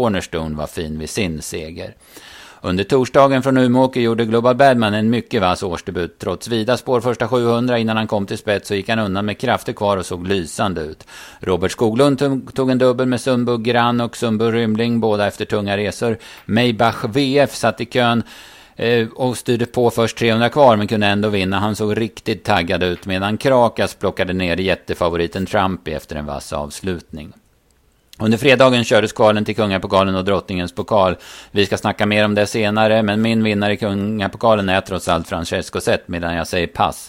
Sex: male